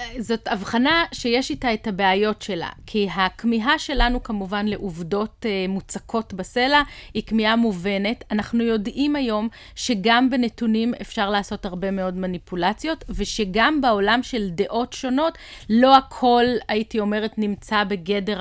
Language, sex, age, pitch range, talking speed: Hebrew, female, 30-49, 205-255 Hz, 125 wpm